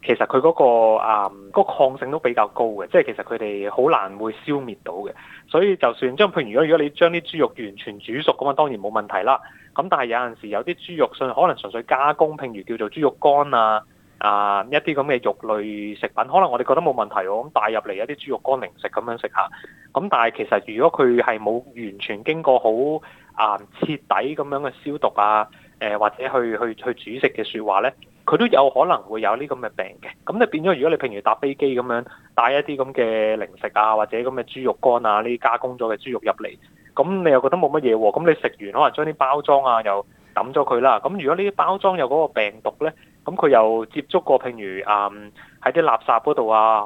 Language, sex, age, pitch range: Chinese, male, 20-39, 105-145 Hz